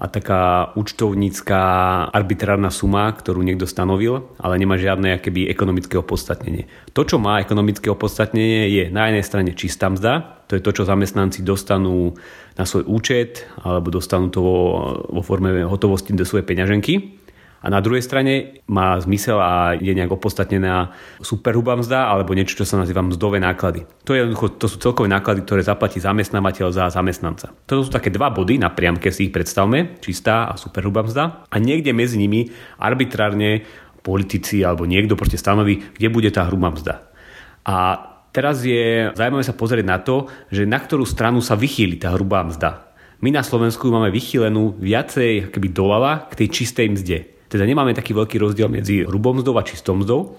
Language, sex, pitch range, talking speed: Slovak, male, 95-115 Hz, 165 wpm